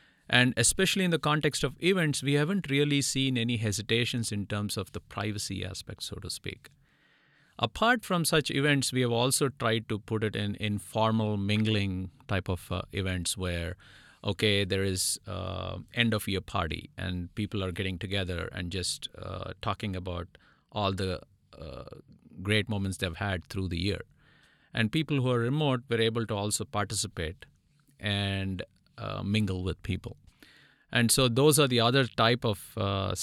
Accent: Indian